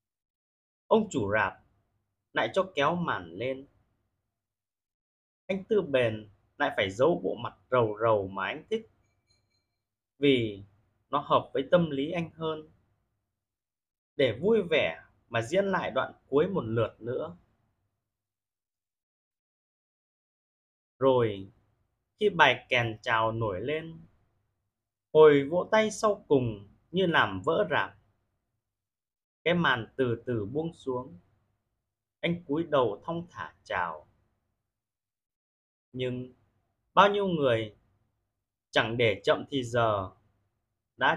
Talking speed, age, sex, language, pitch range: 115 wpm, 30-49, male, Vietnamese, 100-145 Hz